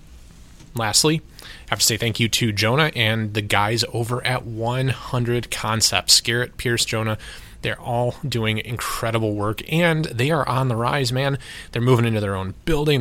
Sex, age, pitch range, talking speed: male, 20-39, 105-125 Hz, 170 wpm